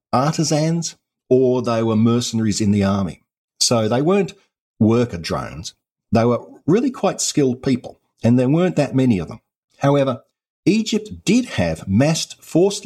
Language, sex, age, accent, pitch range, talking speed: English, male, 50-69, Australian, 105-145 Hz, 150 wpm